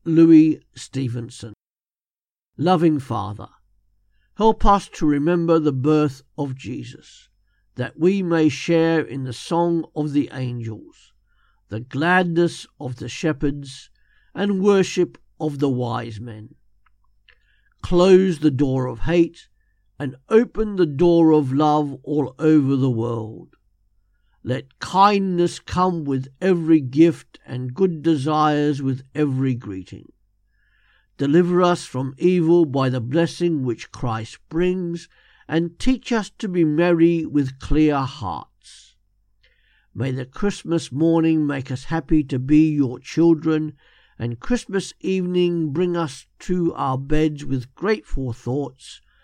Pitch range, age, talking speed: 125-170 Hz, 50-69, 125 wpm